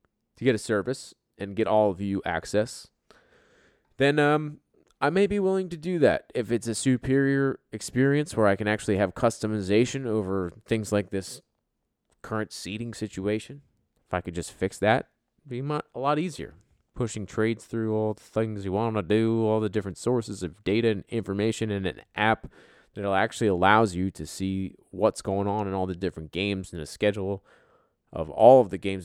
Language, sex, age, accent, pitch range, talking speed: English, male, 20-39, American, 95-125 Hz, 190 wpm